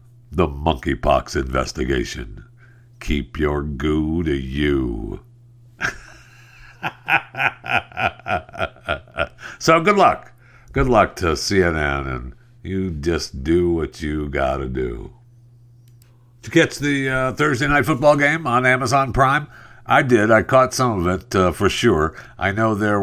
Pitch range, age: 80-120 Hz, 60-79